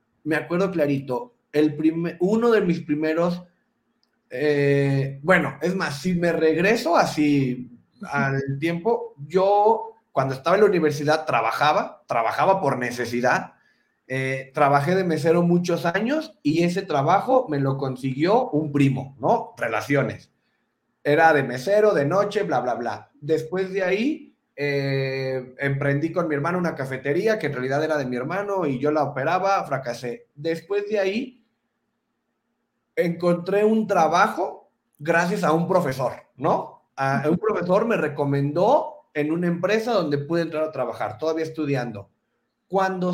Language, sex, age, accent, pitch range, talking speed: Spanish, male, 30-49, Mexican, 140-185 Hz, 145 wpm